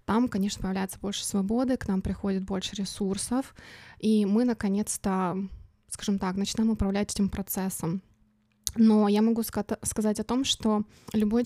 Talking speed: 140 wpm